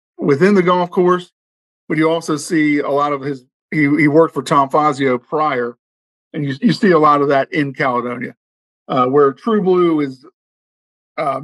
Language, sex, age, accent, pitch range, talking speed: English, male, 50-69, American, 130-155 Hz, 185 wpm